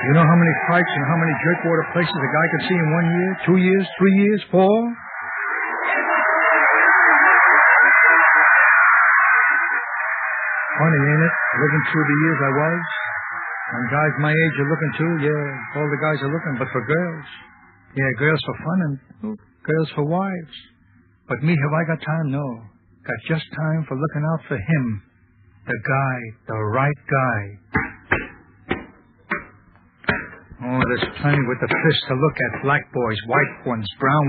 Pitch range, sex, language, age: 125-175 Hz, male, English, 60-79